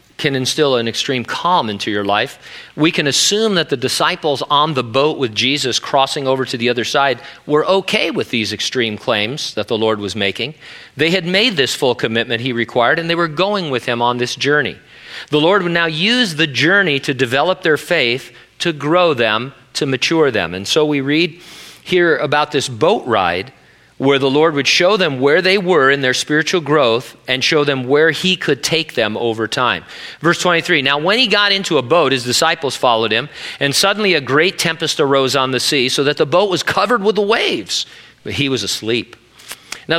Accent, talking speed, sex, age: American, 205 wpm, male, 40-59